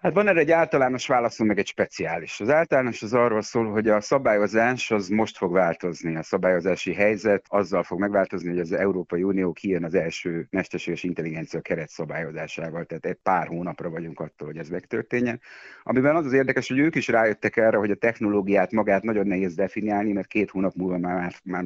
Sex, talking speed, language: male, 190 wpm, Hungarian